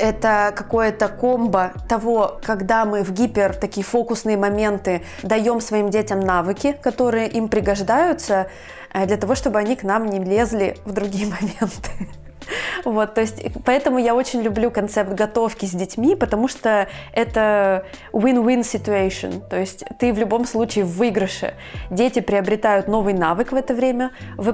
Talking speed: 140 wpm